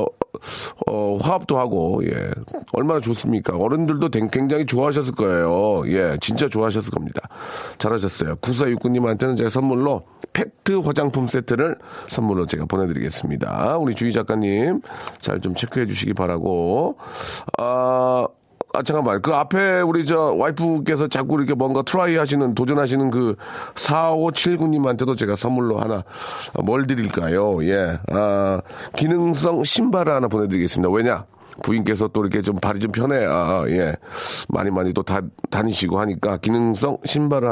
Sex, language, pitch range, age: male, Korean, 105-145 Hz, 40-59